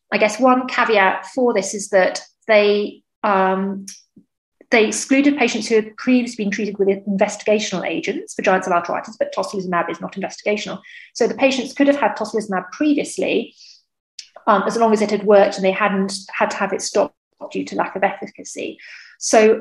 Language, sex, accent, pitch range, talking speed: English, female, British, 195-235 Hz, 175 wpm